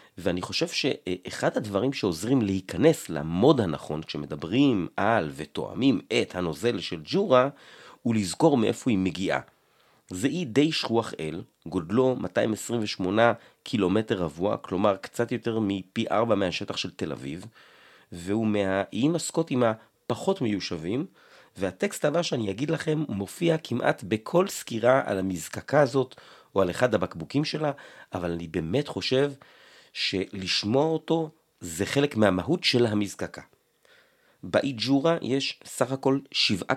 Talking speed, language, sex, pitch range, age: 125 wpm, Hebrew, male, 90-135 Hz, 30-49